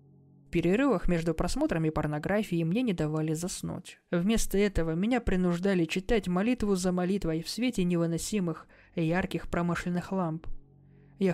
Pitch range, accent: 165-200 Hz, native